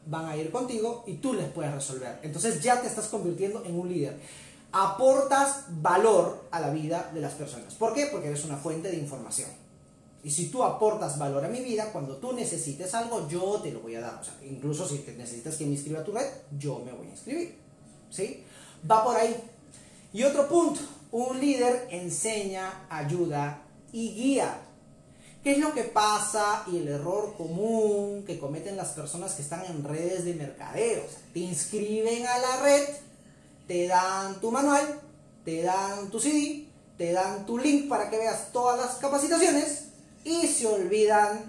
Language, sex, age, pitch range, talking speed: Spanish, male, 30-49, 165-255 Hz, 180 wpm